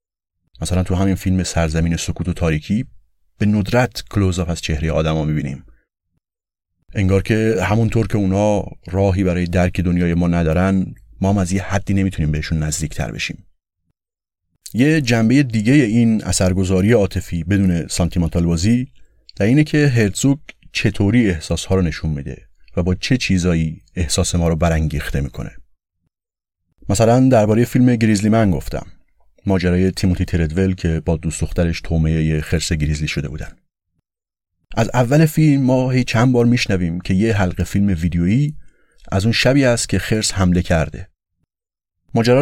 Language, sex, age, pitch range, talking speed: Persian, male, 30-49, 85-115 Hz, 145 wpm